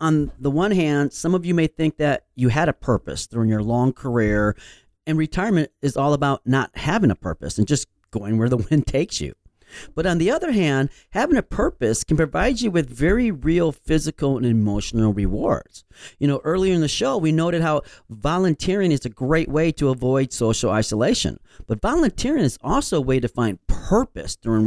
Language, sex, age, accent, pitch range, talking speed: English, male, 40-59, American, 120-165 Hz, 195 wpm